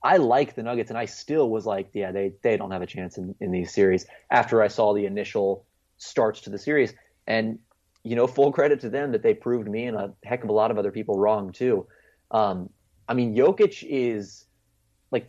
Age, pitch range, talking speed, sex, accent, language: 30-49, 105-125 Hz, 220 wpm, male, American, English